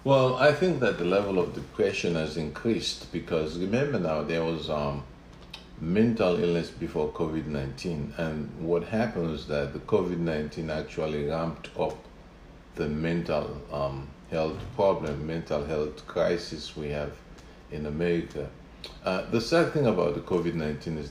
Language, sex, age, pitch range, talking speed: English, male, 50-69, 75-90 Hz, 140 wpm